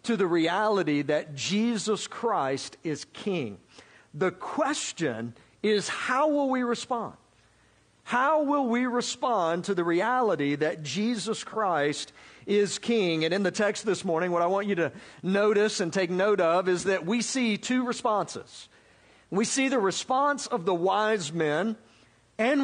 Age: 50-69